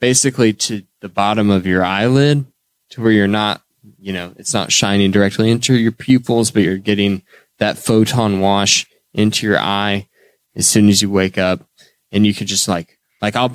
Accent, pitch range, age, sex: American, 100-120 Hz, 20-39, male